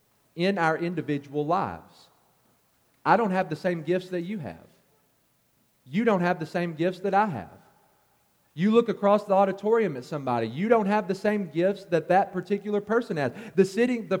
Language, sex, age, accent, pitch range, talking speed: English, male, 40-59, American, 155-200 Hz, 175 wpm